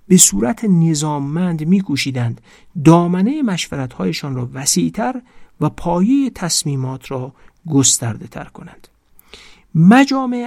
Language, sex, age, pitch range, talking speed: Persian, male, 50-69, 135-190 Hz, 85 wpm